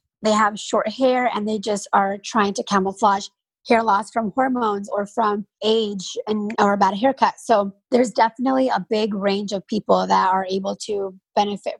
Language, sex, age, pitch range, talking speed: English, female, 20-39, 200-235 Hz, 185 wpm